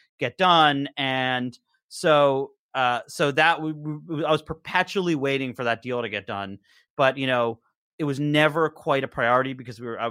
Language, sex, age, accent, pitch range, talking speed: English, male, 30-49, American, 120-145 Hz, 180 wpm